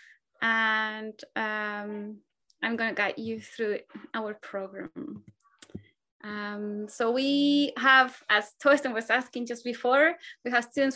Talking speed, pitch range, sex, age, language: 120 wpm, 225-280 Hz, female, 20-39, English